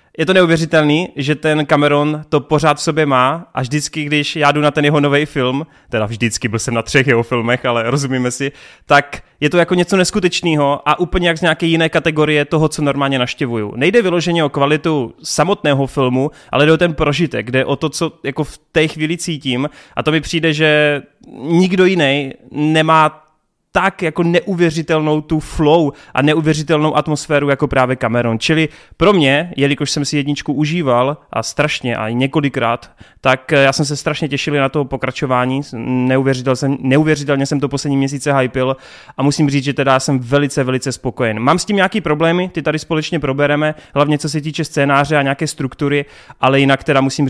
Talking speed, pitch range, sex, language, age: 185 wpm, 135-155 Hz, male, Czech, 20-39